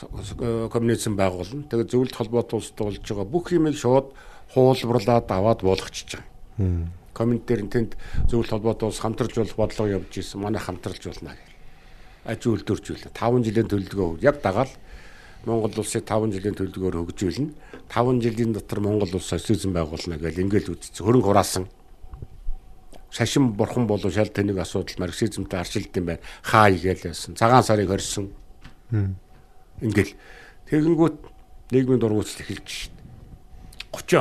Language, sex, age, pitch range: Korean, male, 60-79, 95-115 Hz